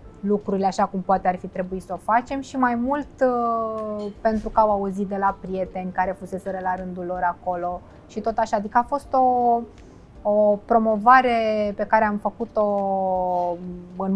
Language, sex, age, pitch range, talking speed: Romanian, female, 20-39, 185-225 Hz, 170 wpm